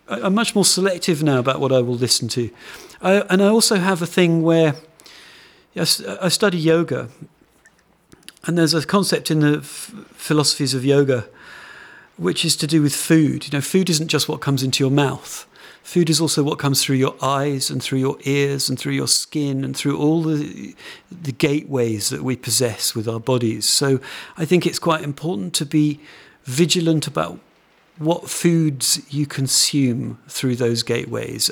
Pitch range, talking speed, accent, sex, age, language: 125-160 Hz, 175 wpm, British, male, 50-69, English